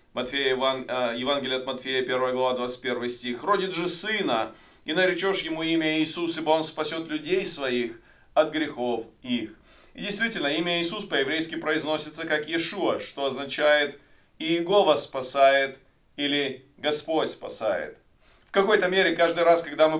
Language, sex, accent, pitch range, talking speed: Russian, male, native, 150-185 Hz, 135 wpm